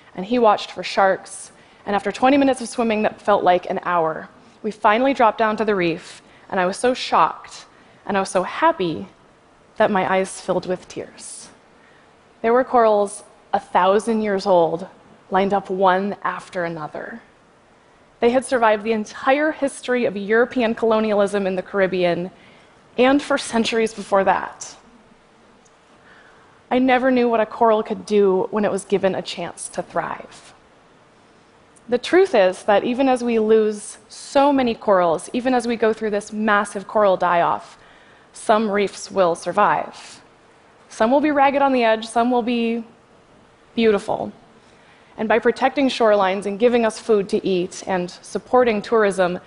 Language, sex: Chinese, female